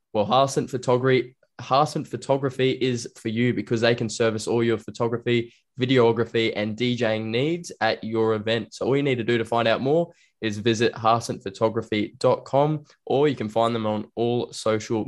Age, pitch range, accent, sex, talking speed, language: 10-29, 110-130 Hz, Australian, male, 165 wpm, English